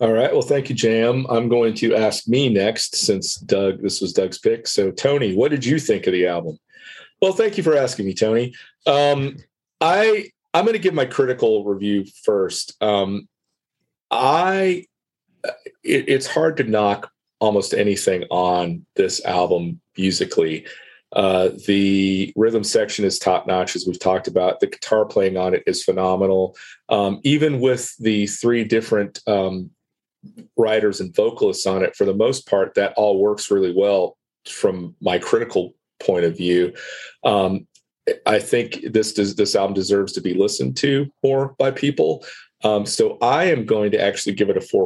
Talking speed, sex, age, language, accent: 170 wpm, male, 40-59, English, American